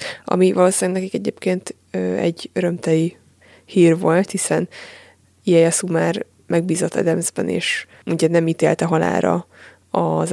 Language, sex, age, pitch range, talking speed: Hungarian, female, 20-39, 165-200 Hz, 115 wpm